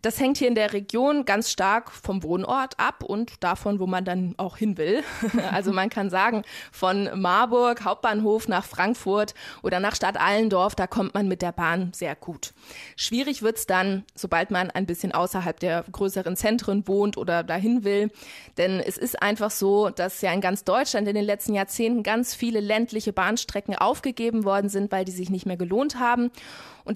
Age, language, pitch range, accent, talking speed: 20-39, German, 190-230 Hz, German, 185 wpm